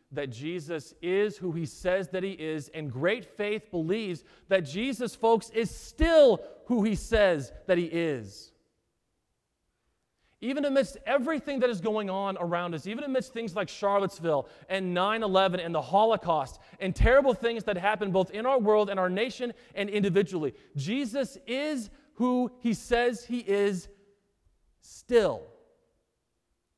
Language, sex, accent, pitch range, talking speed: English, male, American, 130-210 Hz, 145 wpm